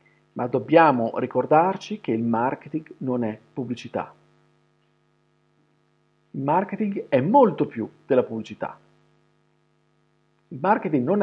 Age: 40-59